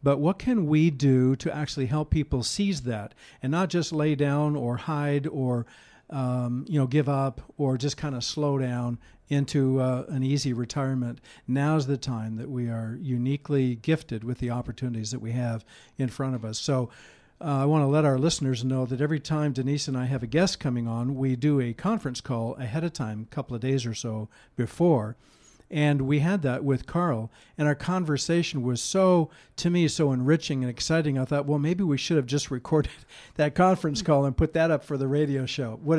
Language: English